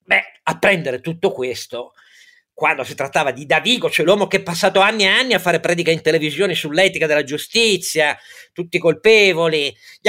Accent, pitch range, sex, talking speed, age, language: native, 135-195 Hz, male, 170 wpm, 50-69, Italian